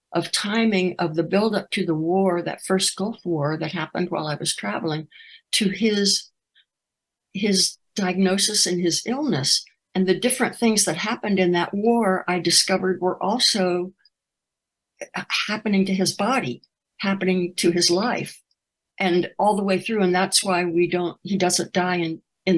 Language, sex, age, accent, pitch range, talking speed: English, female, 60-79, American, 175-210 Hz, 160 wpm